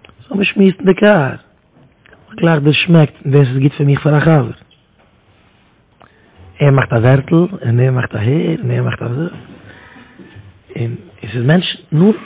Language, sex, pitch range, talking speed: English, male, 115-155 Hz, 155 wpm